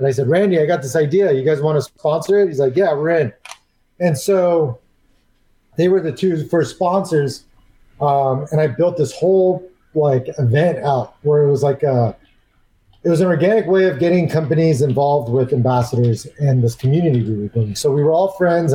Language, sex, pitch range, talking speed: English, male, 125-155 Hz, 200 wpm